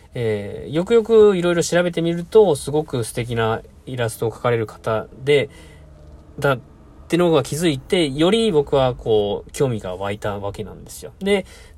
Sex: male